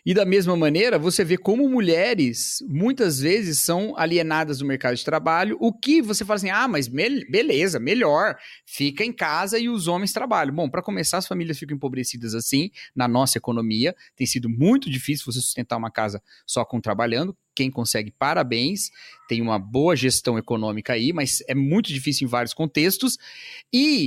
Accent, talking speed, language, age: Brazilian, 175 wpm, Portuguese, 30-49